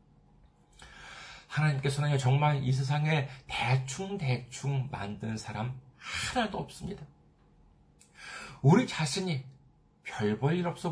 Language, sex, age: Korean, male, 40-59